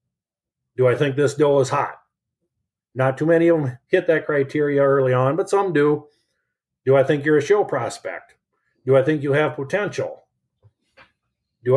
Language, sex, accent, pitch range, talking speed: English, male, American, 130-160 Hz, 175 wpm